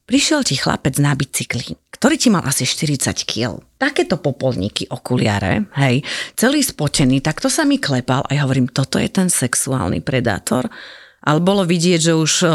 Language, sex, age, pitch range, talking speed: Slovak, female, 30-49, 150-210 Hz, 165 wpm